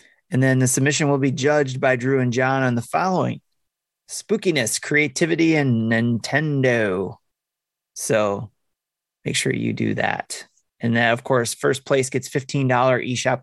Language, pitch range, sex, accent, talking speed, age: English, 115-140 Hz, male, American, 150 wpm, 30-49